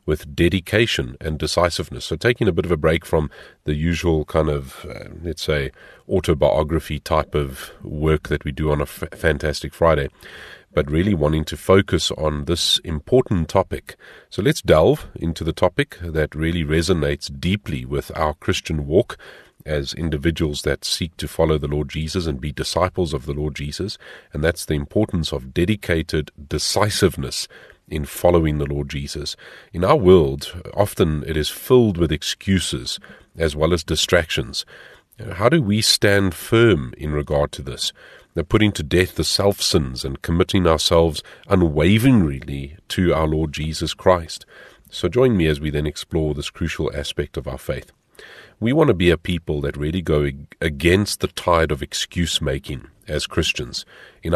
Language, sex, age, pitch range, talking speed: English, male, 40-59, 75-90 Hz, 165 wpm